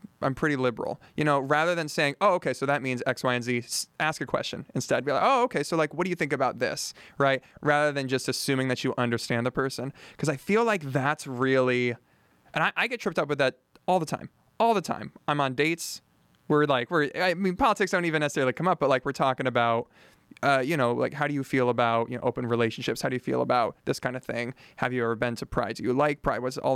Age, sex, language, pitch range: 20-39, male, English, 125-155 Hz